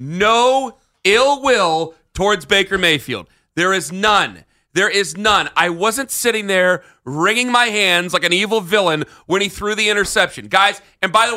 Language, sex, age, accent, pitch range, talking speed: English, male, 40-59, American, 160-215 Hz, 170 wpm